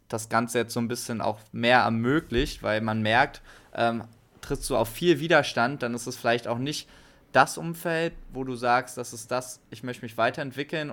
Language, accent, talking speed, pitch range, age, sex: German, German, 205 wpm, 115-135 Hz, 20-39, male